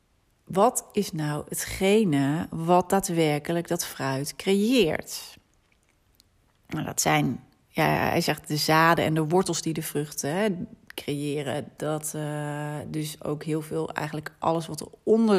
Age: 30-49